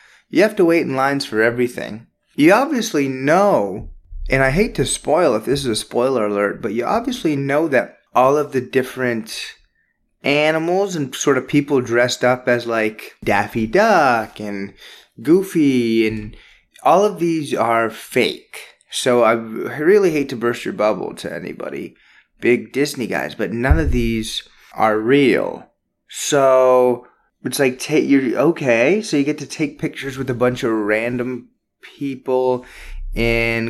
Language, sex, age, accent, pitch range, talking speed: English, male, 20-39, American, 115-145 Hz, 155 wpm